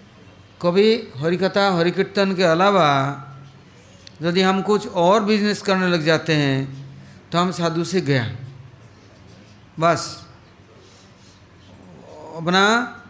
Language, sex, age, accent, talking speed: English, male, 60-79, Indian, 95 wpm